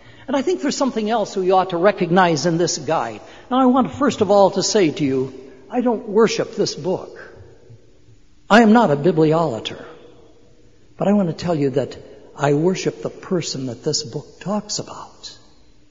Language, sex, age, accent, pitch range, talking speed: English, male, 60-79, American, 155-220 Hz, 190 wpm